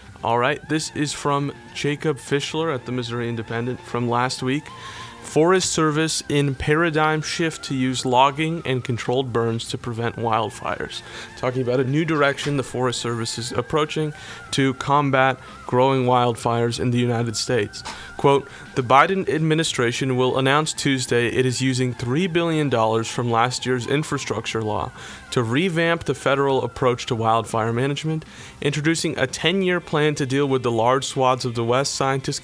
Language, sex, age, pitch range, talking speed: English, male, 30-49, 120-145 Hz, 155 wpm